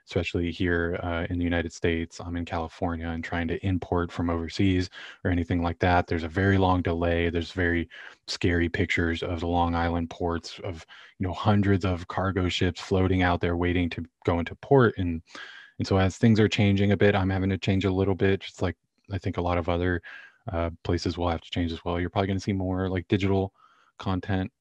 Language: English